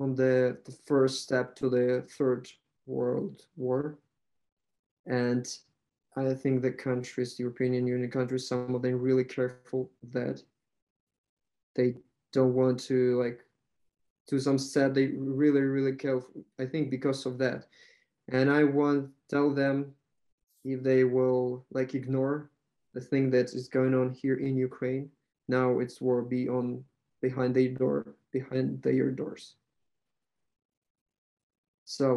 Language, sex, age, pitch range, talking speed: English, male, 20-39, 125-135 Hz, 135 wpm